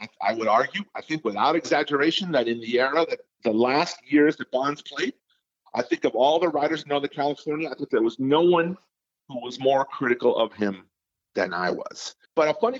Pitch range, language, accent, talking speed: 120-185 Hz, English, American, 220 wpm